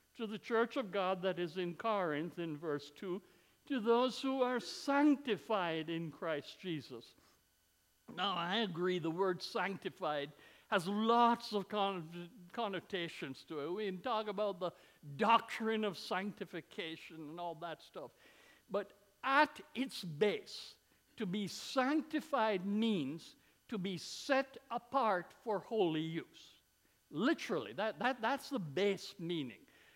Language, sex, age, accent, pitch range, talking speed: English, male, 60-79, American, 185-250 Hz, 130 wpm